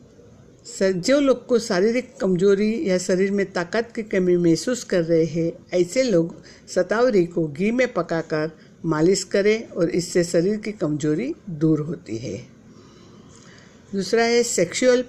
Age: 60-79